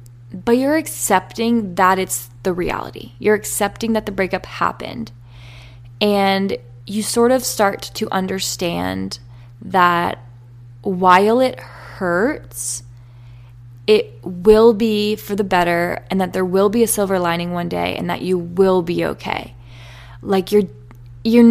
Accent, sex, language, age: American, female, English, 20-39